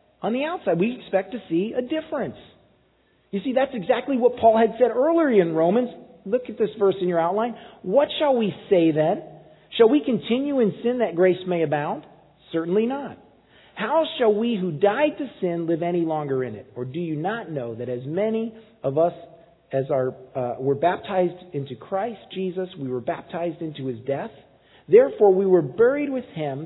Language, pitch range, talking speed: English, 160-255 Hz, 190 wpm